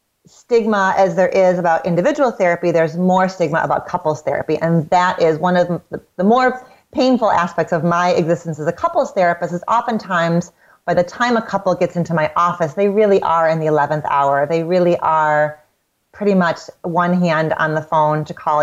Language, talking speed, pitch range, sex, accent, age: English, 195 wpm, 165-210 Hz, female, American, 30-49